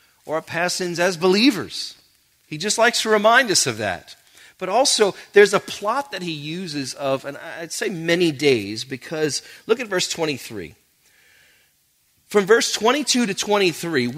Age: 40-59